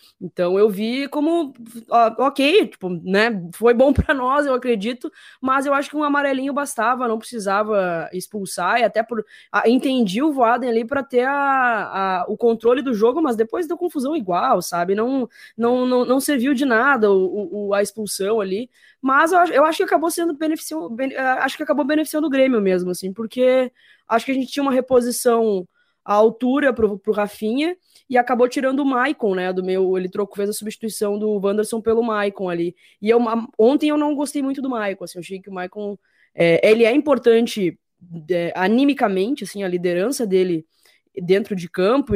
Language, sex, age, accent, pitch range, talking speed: Portuguese, female, 20-39, Brazilian, 195-265 Hz, 190 wpm